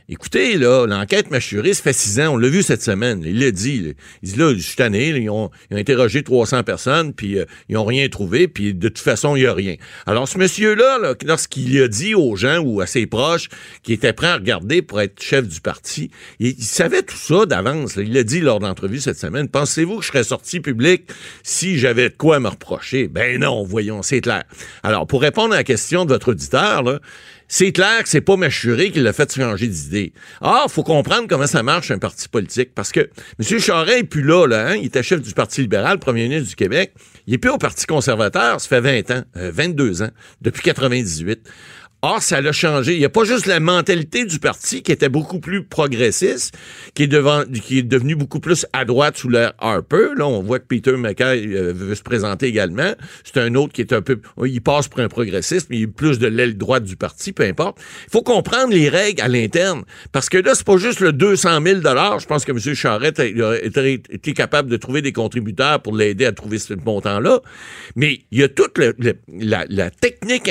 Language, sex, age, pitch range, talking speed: French, male, 60-79, 115-160 Hz, 235 wpm